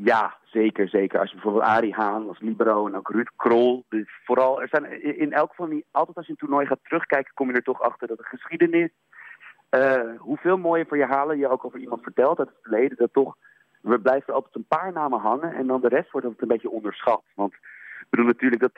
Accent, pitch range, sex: Dutch, 110-150 Hz, male